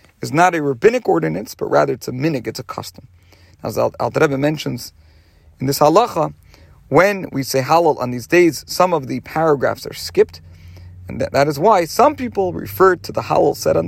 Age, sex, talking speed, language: 50-69, male, 200 wpm, English